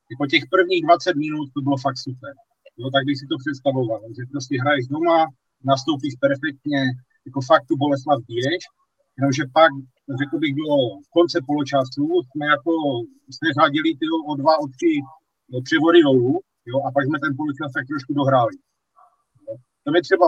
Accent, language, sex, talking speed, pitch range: native, Czech, male, 165 wpm, 135-175 Hz